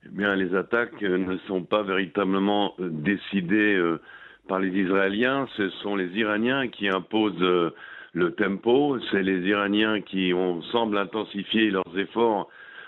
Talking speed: 140 wpm